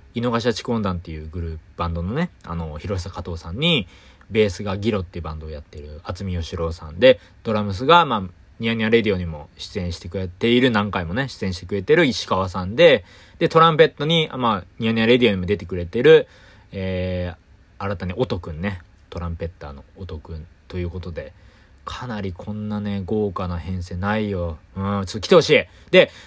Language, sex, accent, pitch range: Japanese, male, native, 90-150 Hz